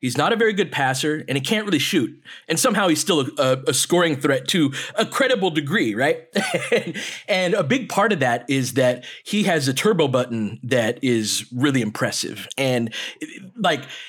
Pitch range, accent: 135-190 Hz, American